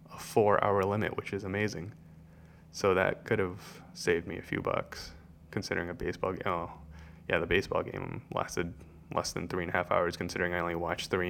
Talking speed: 195 wpm